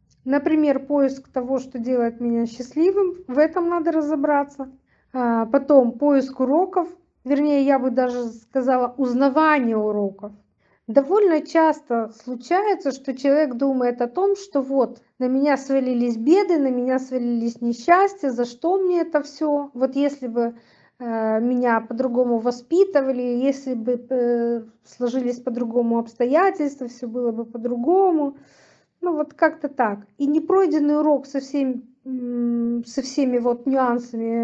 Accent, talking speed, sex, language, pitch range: native, 125 wpm, female, Russian, 245-295 Hz